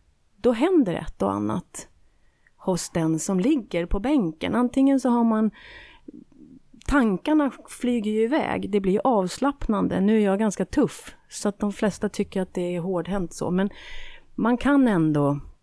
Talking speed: 155 wpm